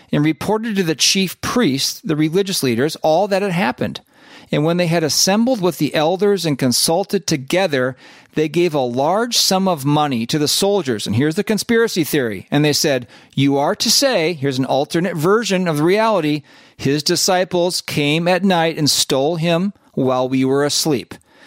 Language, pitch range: English, 135-185 Hz